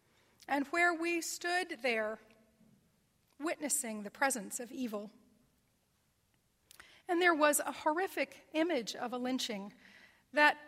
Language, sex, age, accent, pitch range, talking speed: English, female, 40-59, American, 220-295 Hz, 110 wpm